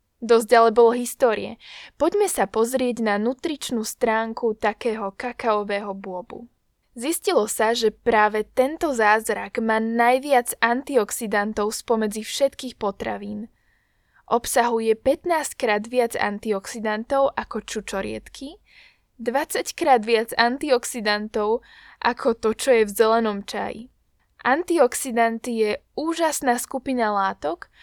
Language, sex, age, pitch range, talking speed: Slovak, female, 10-29, 215-255 Hz, 105 wpm